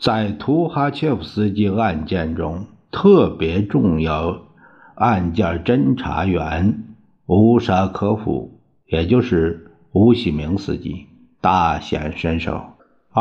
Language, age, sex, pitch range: Chinese, 60-79, male, 85-100 Hz